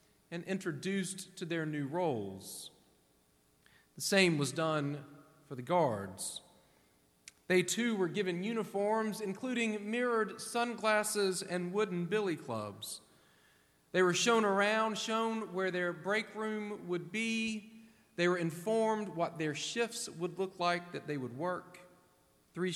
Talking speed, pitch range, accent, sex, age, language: 130 wpm, 140-215 Hz, American, male, 40-59, English